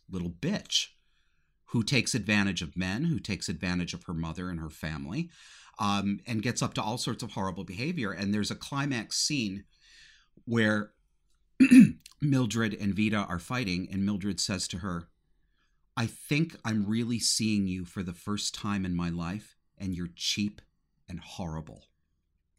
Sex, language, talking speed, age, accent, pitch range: male, English, 160 wpm, 50-69, American, 80-105 Hz